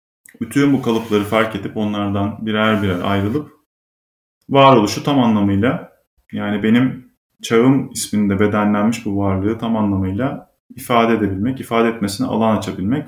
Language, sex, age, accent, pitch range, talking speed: Turkish, male, 30-49, native, 100-120 Hz, 125 wpm